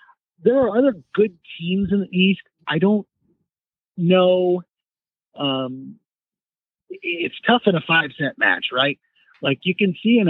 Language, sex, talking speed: English, male, 145 wpm